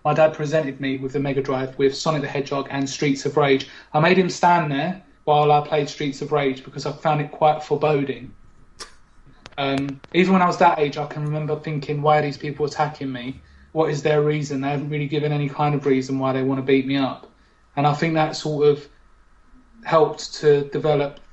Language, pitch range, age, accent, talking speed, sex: English, 135-155 Hz, 20-39, British, 220 wpm, male